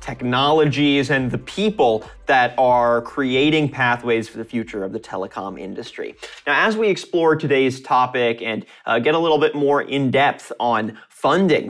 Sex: male